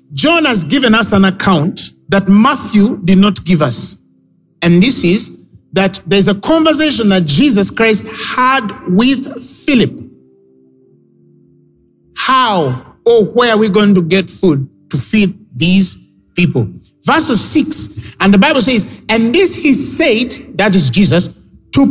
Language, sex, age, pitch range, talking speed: English, male, 50-69, 170-250 Hz, 140 wpm